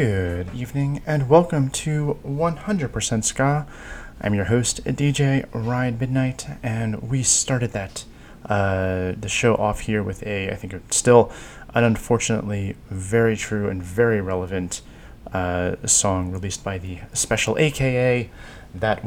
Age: 30-49